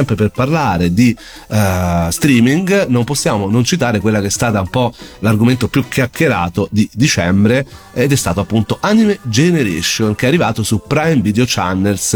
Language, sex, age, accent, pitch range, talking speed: Italian, male, 40-59, native, 100-130 Hz, 165 wpm